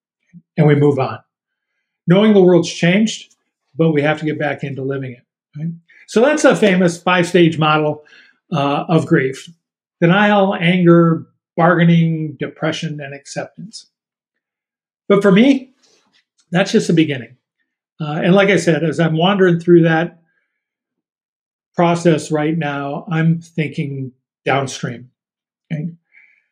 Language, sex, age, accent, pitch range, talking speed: English, male, 50-69, American, 150-185 Hz, 130 wpm